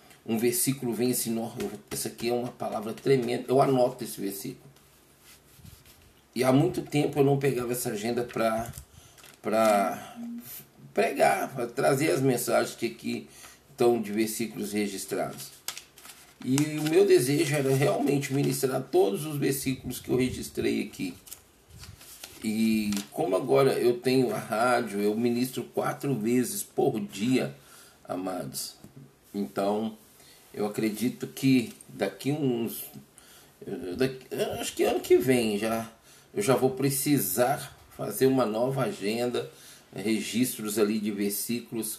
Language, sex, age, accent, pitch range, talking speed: Portuguese, male, 40-59, Brazilian, 110-135 Hz, 125 wpm